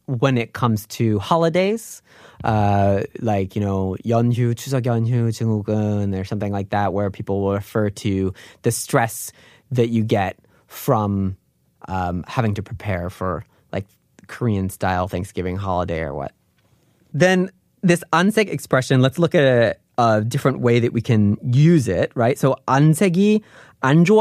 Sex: male